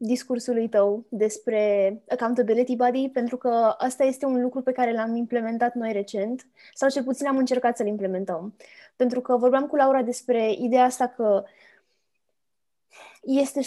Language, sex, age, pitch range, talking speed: Romanian, female, 20-39, 215-260 Hz, 150 wpm